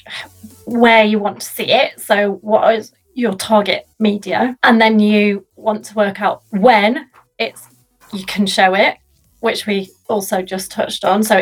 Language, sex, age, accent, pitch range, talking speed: English, female, 30-49, British, 185-220 Hz, 170 wpm